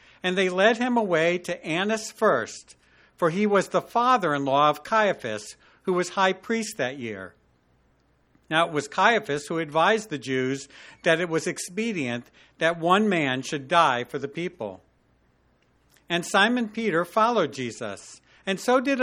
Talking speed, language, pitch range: 155 wpm, English, 145-200 Hz